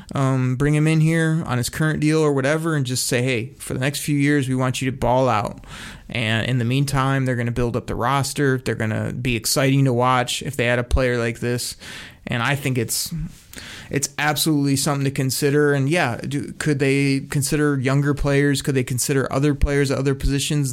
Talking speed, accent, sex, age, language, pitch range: 220 wpm, American, male, 30-49, English, 130-160 Hz